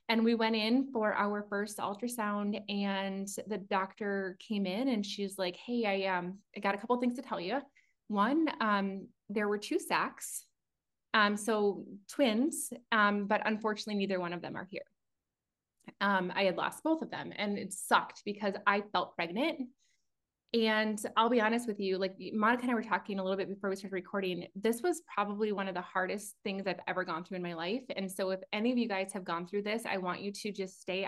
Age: 20-39